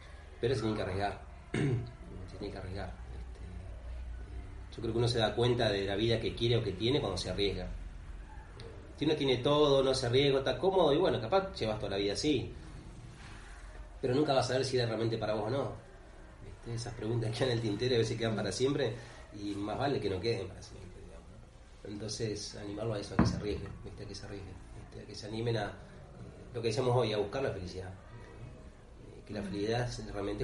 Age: 30-49